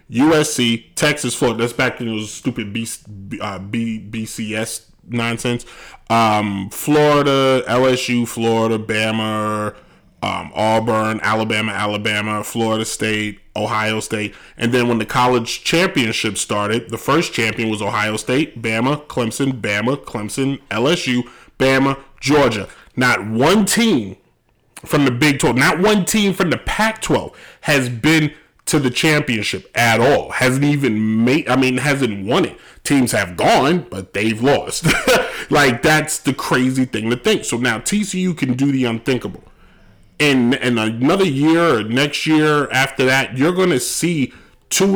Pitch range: 110-145 Hz